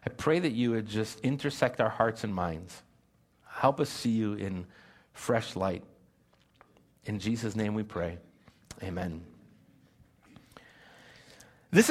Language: English